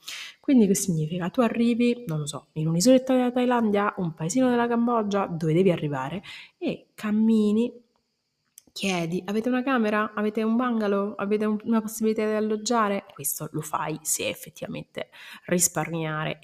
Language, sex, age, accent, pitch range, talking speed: Italian, female, 30-49, native, 160-215 Hz, 140 wpm